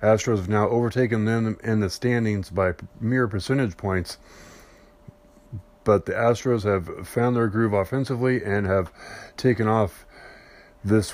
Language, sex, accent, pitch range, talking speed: English, male, American, 105-125 Hz, 135 wpm